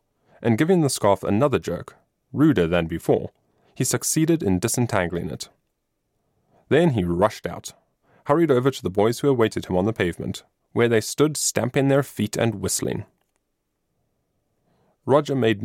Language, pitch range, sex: English, 95-145 Hz, male